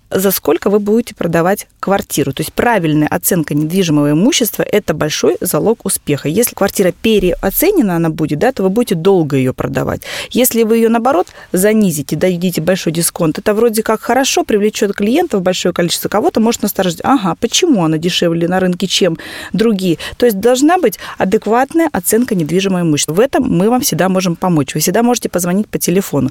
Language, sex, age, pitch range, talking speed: Russian, female, 20-39, 165-230 Hz, 170 wpm